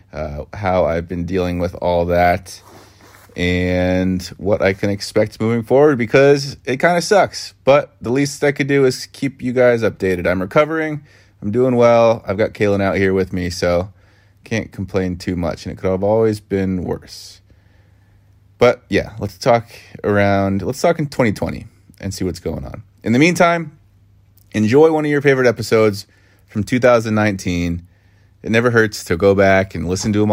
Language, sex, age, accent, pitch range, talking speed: English, male, 30-49, American, 95-120 Hz, 180 wpm